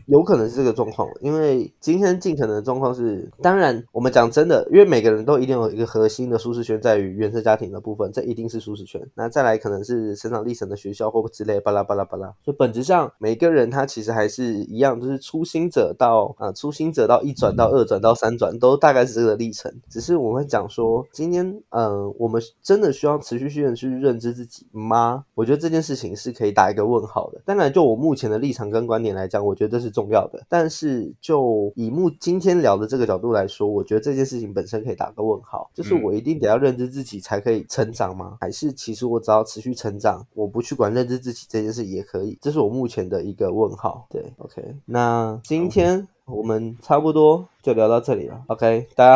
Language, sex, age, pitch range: Chinese, male, 20-39, 110-150 Hz